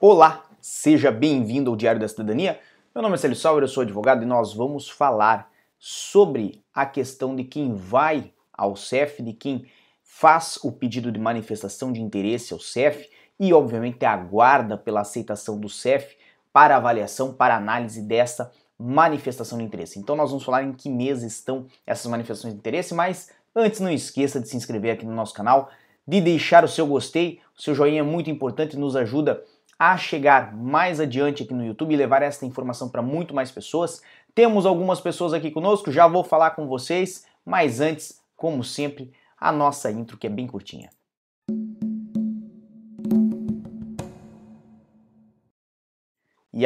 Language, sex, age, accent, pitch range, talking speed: Portuguese, male, 20-39, Brazilian, 125-185 Hz, 165 wpm